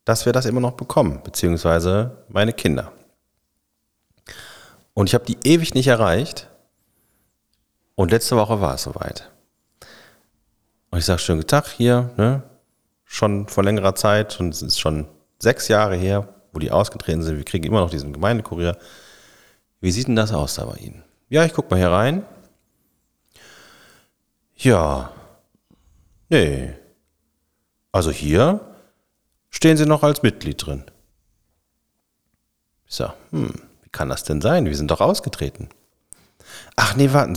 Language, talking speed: German, 140 wpm